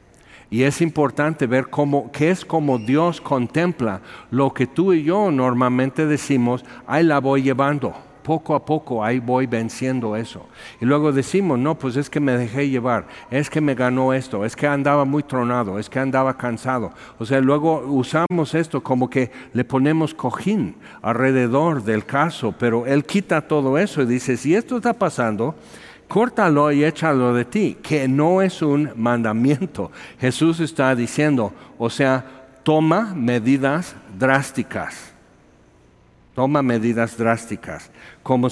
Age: 60-79